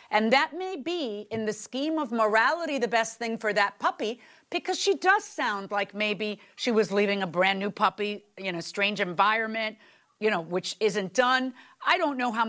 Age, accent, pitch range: 40-59, American, 205-290 Hz